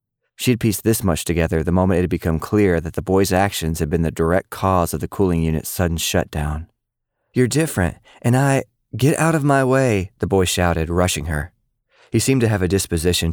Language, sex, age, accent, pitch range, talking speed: English, male, 30-49, American, 85-110 Hz, 210 wpm